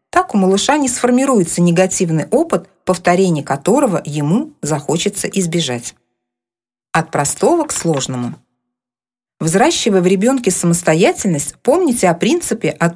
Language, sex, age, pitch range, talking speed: Russian, female, 40-59, 155-200 Hz, 110 wpm